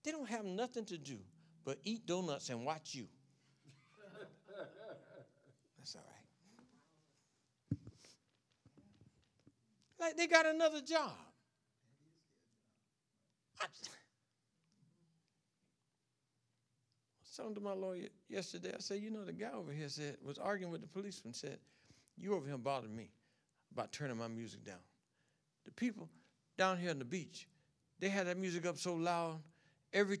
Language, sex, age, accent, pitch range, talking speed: English, male, 60-79, American, 120-195 Hz, 130 wpm